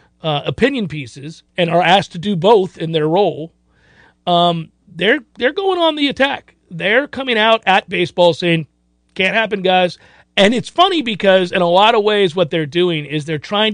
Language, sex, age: English, male, 40-59